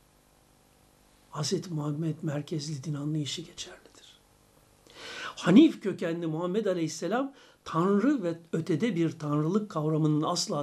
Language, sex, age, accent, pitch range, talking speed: Turkish, male, 60-79, native, 155-225 Hz, 95 wpm